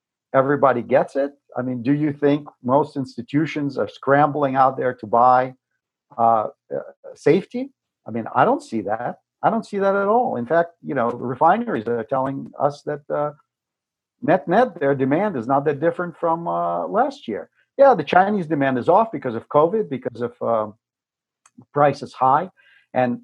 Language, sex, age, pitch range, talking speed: English, male, 50-69, 125-180 Hz, 175 wpm